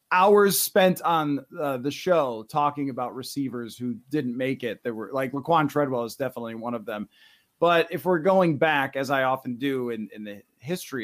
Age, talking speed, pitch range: 30-49, 195 wpm, 135-200 Hz